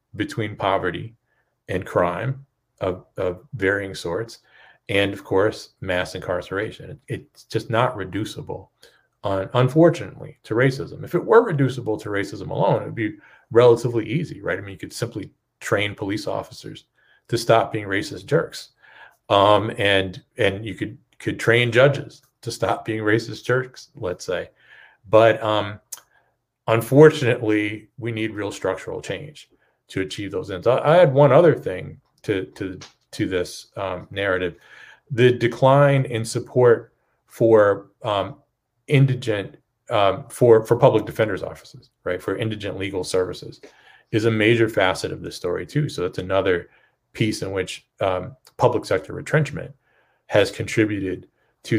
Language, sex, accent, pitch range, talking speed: English, male, American, 100-130 Hz, 145 wpm